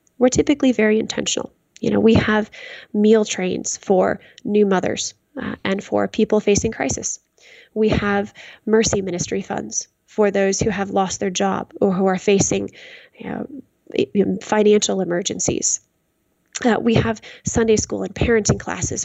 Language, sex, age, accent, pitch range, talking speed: English, female, 20-39, American, 195-230 Hz, 140 wpm